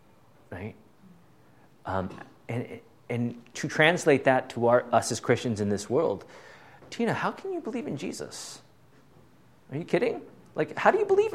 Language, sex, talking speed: English, male, 160 wpm